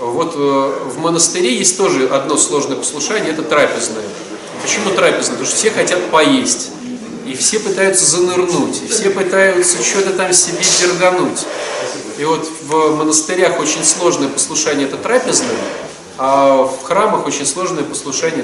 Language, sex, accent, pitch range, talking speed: Russian, male, native, 150-220 Hz, 145 wpm